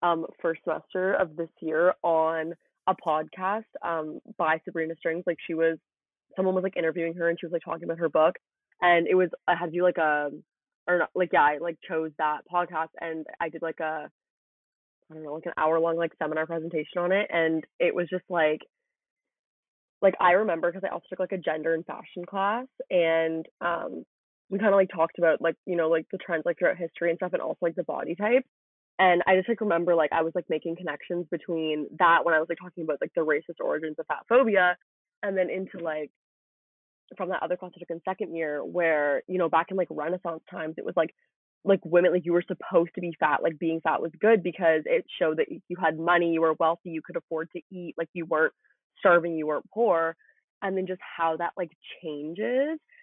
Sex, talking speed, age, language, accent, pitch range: female, 220 wpm, 20-39, English, American, 160-185 Hz